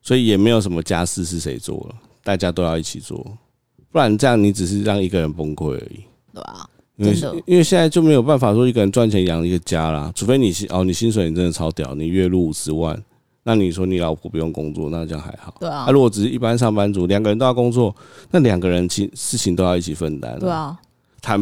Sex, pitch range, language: male, 85-120 Hz, Chinese